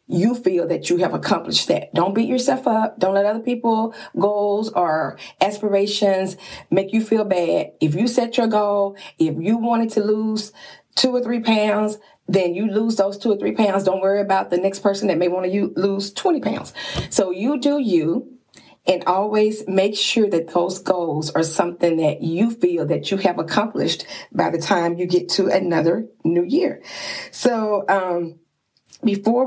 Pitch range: 175-220 Hz